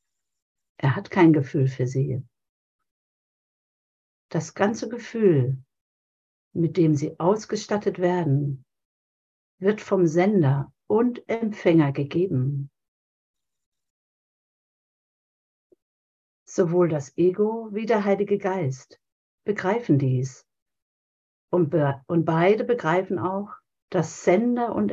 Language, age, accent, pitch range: German, 60-79, German, 135-195 Hz